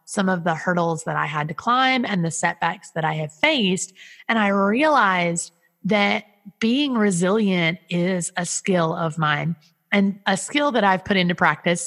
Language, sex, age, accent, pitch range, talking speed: English, female, 30-49, American, 165-210 Hz, 175 wpm